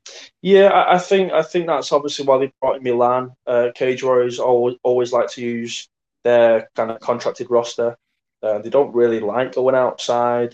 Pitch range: 115-130 Hz